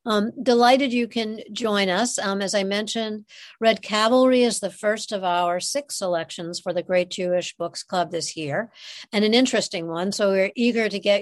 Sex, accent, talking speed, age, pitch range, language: female, American, 200 wpm, 60-79, 185-235 Hz, English